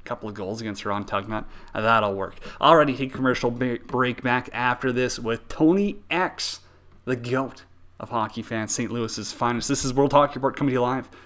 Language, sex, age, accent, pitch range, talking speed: English, male, 30-49, American, 110-130 Hz, 190 wpm